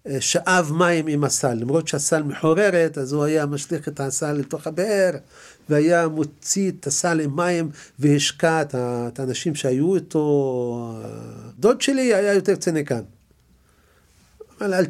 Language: Hebrew